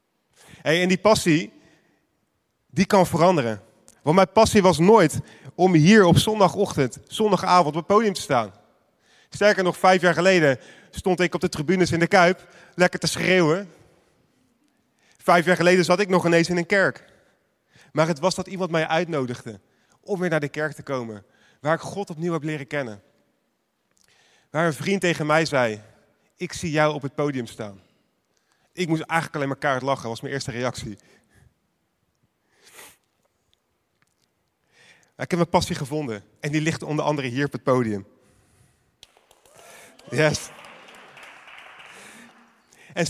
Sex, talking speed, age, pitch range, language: male, 150 wpm, 30-49, 140-180 Hz, Dutch